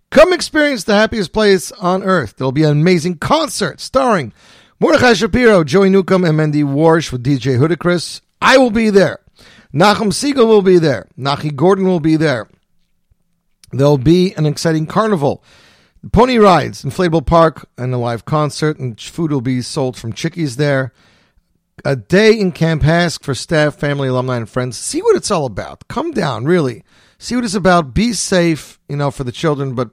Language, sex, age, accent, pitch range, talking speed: English, male, 40-59, American, 125-180 Hz, 185 wpm